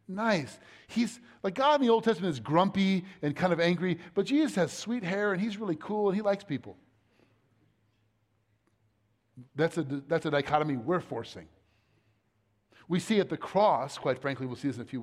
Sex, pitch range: male, 110-165 Hz